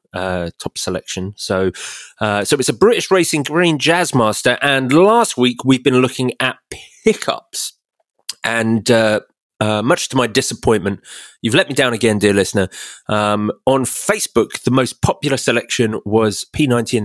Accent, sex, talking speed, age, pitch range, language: British, male, 160 wpm, 30-49, 115-155 Hz, English